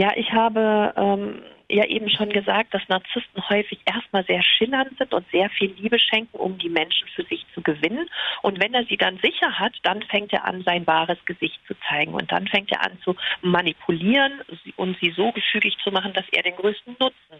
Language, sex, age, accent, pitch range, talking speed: German, female, 40-59, German, 190-235 Hz, 210 wpm